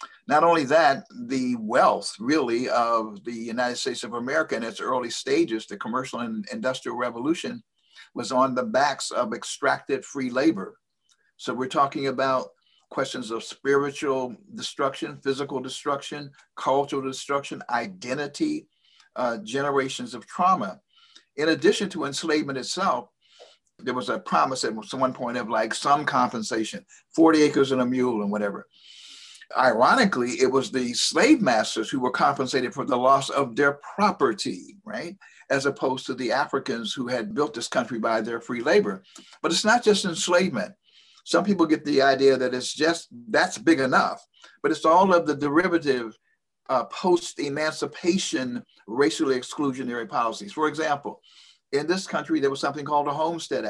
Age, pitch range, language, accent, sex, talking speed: 60-79, 125-170 Hz, English, American, male, 155 wpm